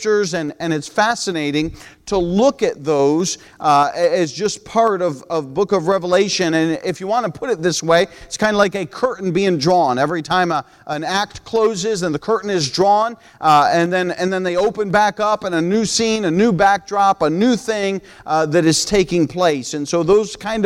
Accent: American